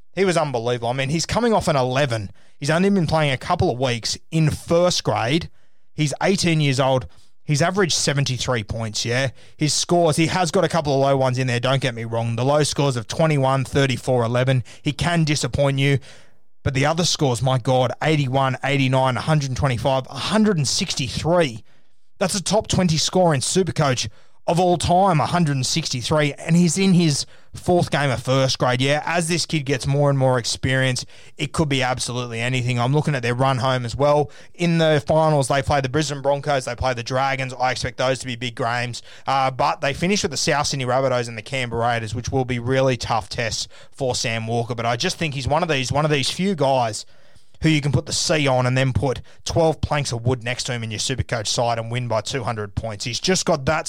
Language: English